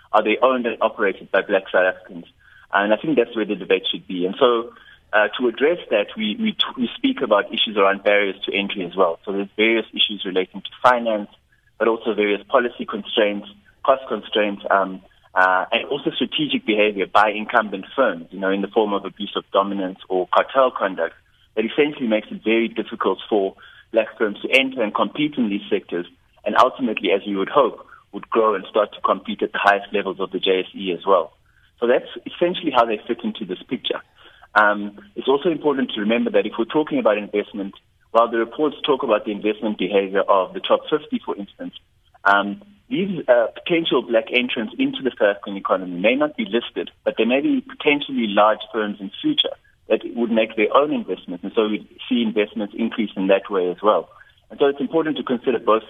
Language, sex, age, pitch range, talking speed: English, male, 30-49, 100-130 Hz, 205 wpm